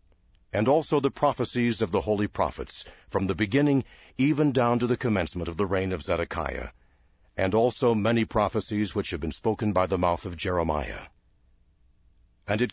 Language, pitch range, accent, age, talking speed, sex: English, 85-115 Hz, American, 60-79, 170 wpm, male